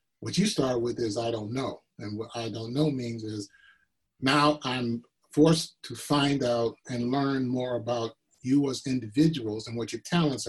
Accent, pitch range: American, 120-150 Hz